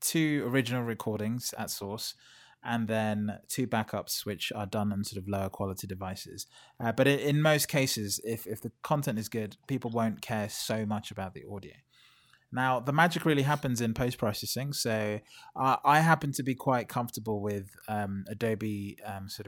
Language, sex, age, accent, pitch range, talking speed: English, male, 20-39, British, 105-130 Hz, 175 wpm